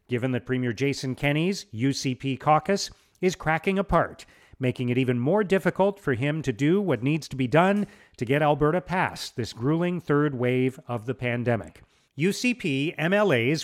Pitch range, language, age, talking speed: 130-185 Hz, English, 40-59, 165 wpm